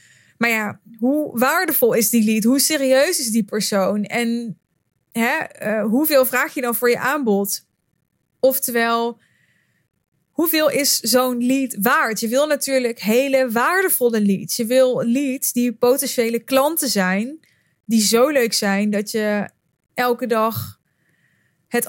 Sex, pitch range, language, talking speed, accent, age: female, 215-265 Hz, Dutch, 130 wpm, Dutch, 20-39